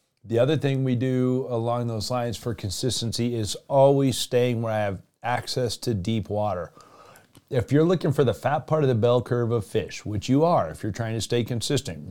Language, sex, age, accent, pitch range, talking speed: English, male, 40-59, American, 100-125 Hz, 210 wpm